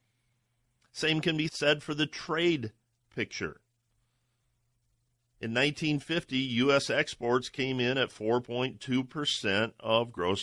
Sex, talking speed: male, 105 wpm